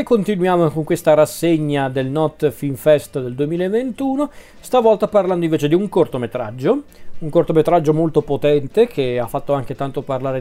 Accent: native